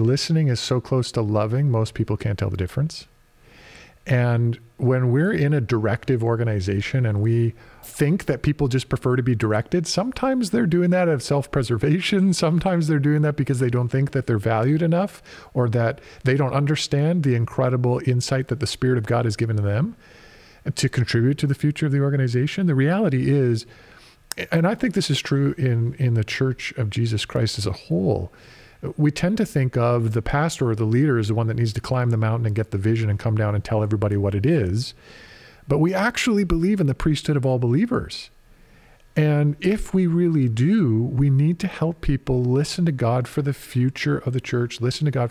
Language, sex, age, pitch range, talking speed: English, male, 40-59, 115-150 Hz, 205 wpm